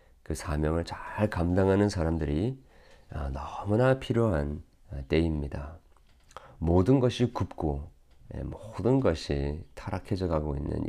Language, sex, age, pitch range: Korean, male, 40-59, 70-90 Hz